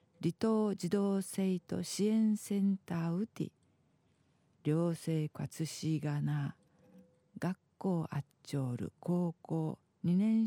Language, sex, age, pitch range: Japanese, female, 50-69, 150-185 Hz